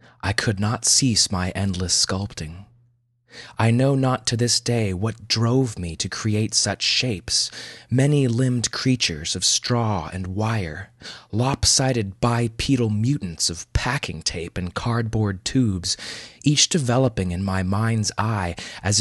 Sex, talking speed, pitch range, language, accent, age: male, 135 wpm, 95-120 Hz, English, American, 20-39